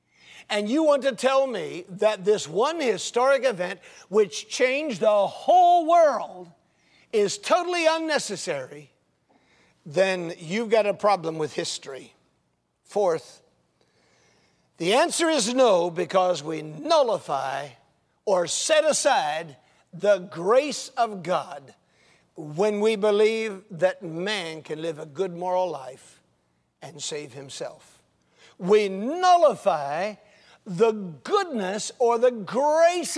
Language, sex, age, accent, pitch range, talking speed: English, male, 50-69, American, 165-260 Hz, 110 wpm